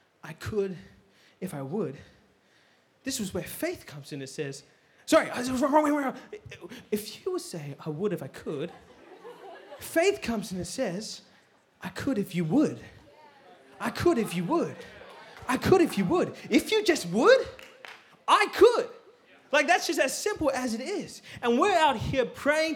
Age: 20-39